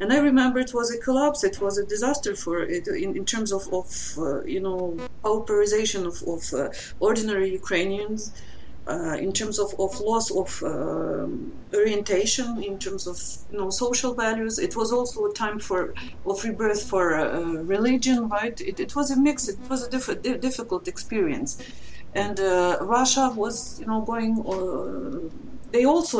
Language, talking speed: English, 175 wpm